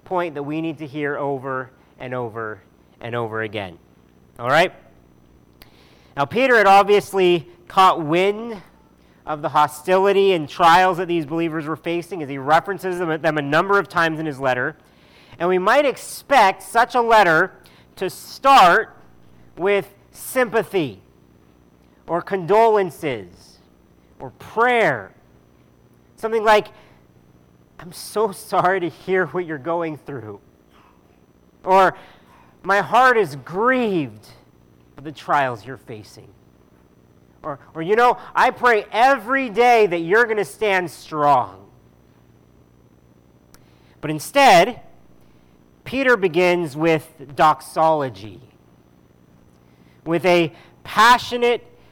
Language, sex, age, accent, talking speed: English, male, 40-59, American, 115 wpm